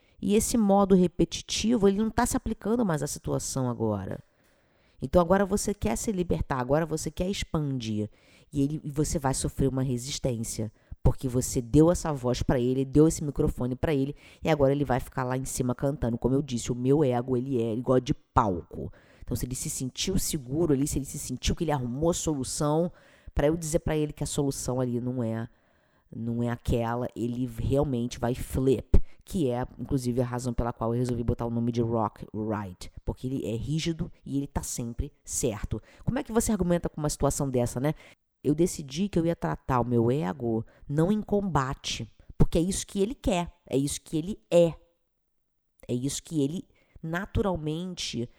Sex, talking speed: female, 195 wpm